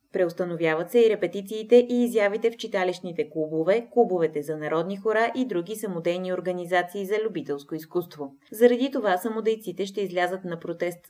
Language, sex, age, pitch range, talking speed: Bulgarian, female, 20-39, 165-220 Hz, 145 wpm